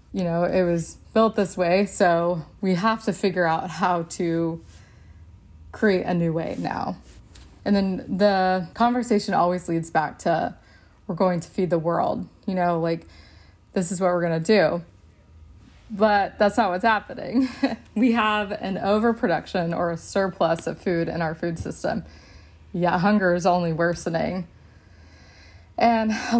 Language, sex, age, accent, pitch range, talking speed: English, female, 20-39, American, 165-205 Hz, 155 wpm